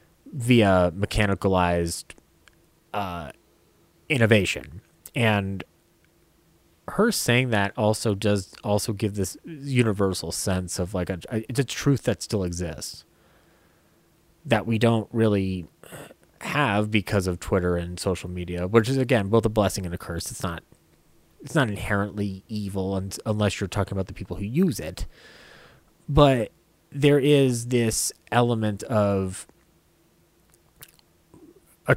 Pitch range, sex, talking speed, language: 90-115 Hz, male, 120 wpm, English